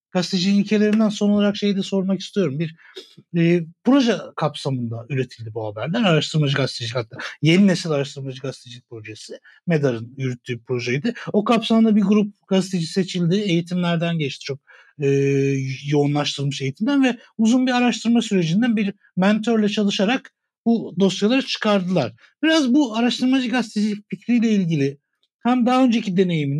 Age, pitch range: 60-79, 150-225 Hz